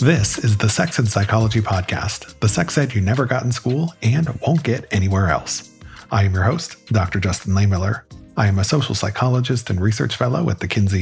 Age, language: 40-59, English